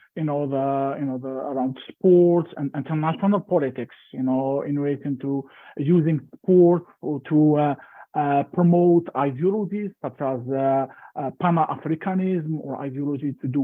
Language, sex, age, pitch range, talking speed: English, male, 50-69, 140-170 Hz, 155 wpm